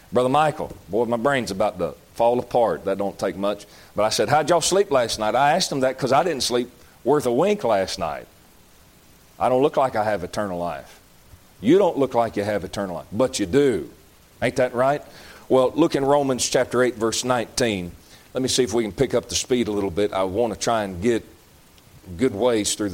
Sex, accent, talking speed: male, American, 225 wpm